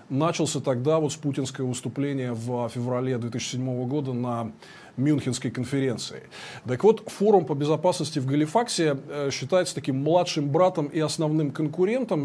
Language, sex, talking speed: Russian, male, 130 wpm